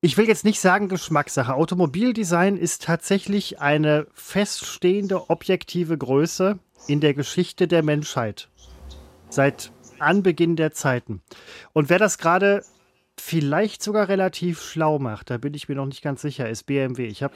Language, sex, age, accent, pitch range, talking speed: German, male, 30-49, German, 130-175 Hz, 150 wpm